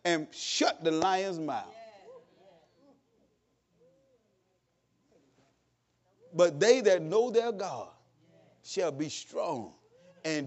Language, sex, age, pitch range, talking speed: English, male, 40-59, 215-300 Hz, 85 wpm